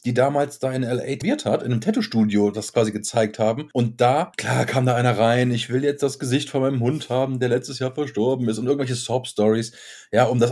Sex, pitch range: male, 115-150 Hz